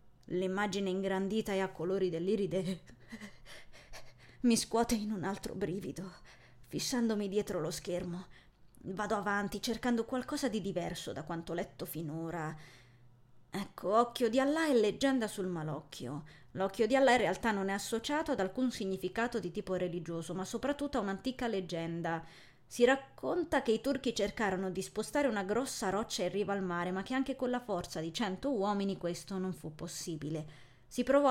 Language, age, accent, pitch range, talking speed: Italian, 20-39, native, 180-245 Hz, 160 wpm